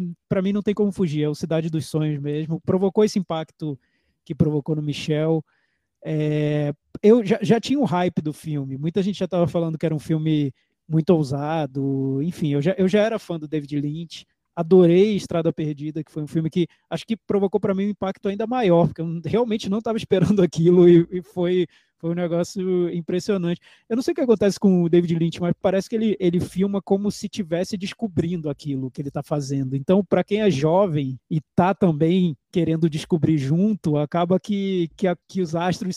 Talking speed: 205 wpm